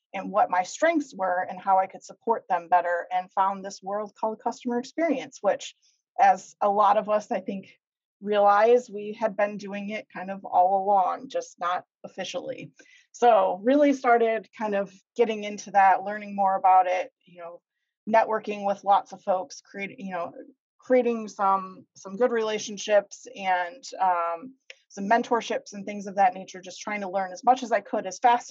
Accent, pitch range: American, 190-240 Hz